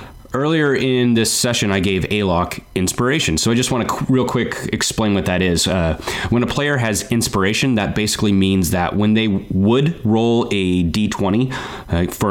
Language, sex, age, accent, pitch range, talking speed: English, male, 30-49, American, 95-120 Hz, 180 wpm